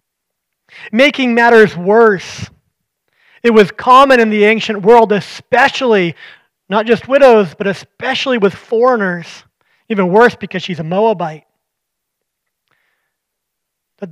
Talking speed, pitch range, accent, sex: 105 wpm, 165-215 Hz, American, male